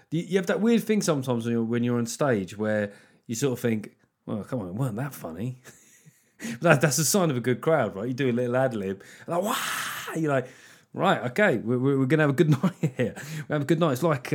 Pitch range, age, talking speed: 115-160 Hz, 30-49, 235 wpm